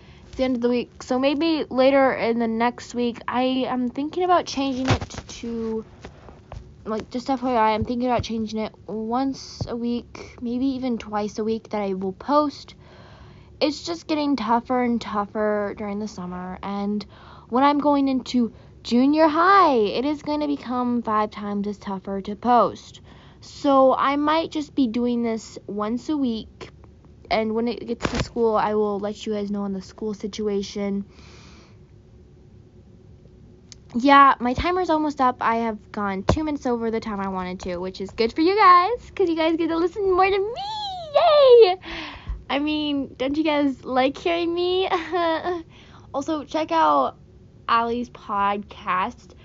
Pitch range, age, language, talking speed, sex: 220-295 Hz, 10-29, English, 165 wpm, female